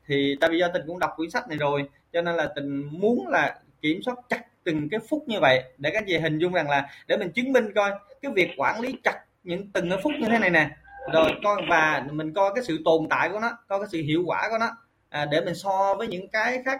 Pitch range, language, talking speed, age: 145-210 Hz, Vietnamese, 270 wpm, 20-39